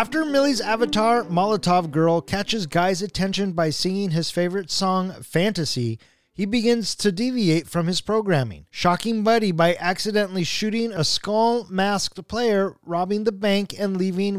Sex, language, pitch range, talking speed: male, English, 165-205 Hz, 140 wpm